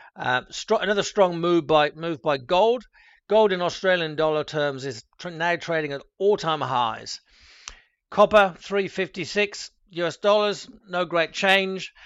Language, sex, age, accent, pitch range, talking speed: English, male, 50-69, British, 145-180 Hz, 140 wpm